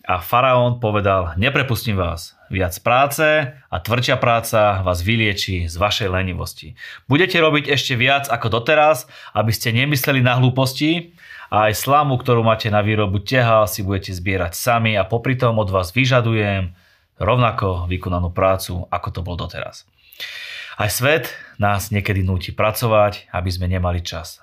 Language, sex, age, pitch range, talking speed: Slovak, male, 30-49, 95-125 Hz, 145 wpm